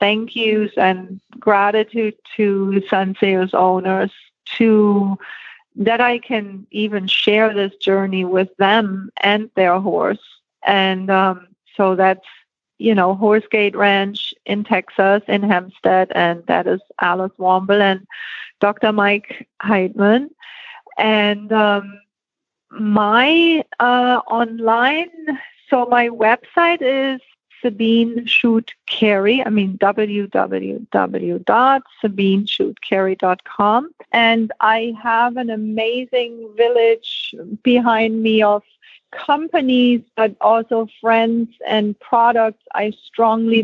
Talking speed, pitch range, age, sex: 100 wpm, 200-240 Hz, 50-69, female